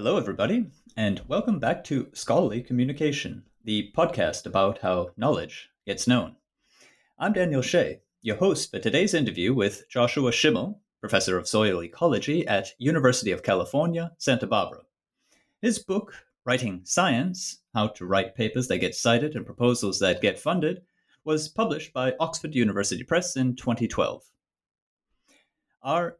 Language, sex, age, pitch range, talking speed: English, male, 30-49, 110-180 Hz, 140 wpm